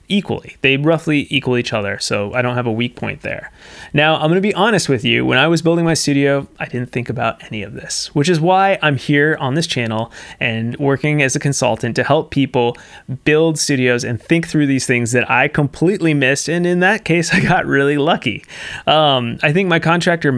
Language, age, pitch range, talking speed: English, 20-39, 120-160 Hz, 220 wpm